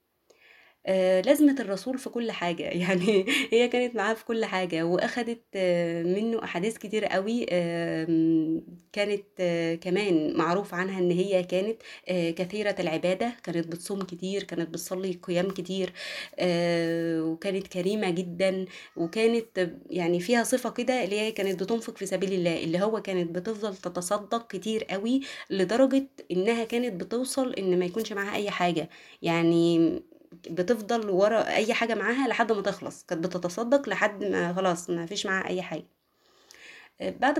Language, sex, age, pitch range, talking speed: Arabic, female, 20-39, 180-220 Hz, 145 wpm